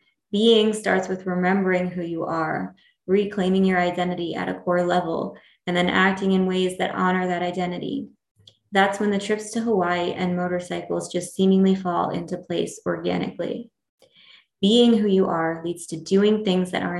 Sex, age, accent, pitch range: female, 20-39, American, 180-205 Hz